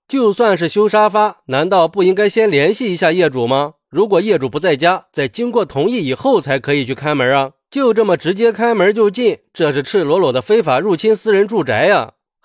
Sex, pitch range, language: male, 135-220 Hz, Chinese